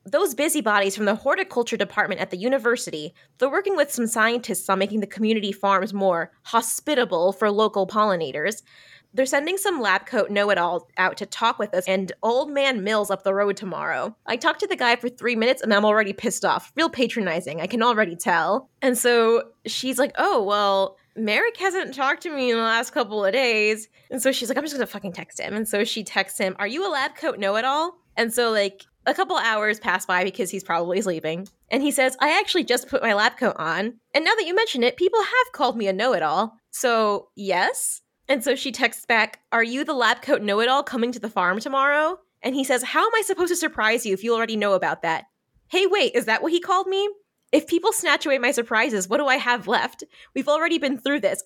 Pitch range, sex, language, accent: 205-280 Hz, female, English, American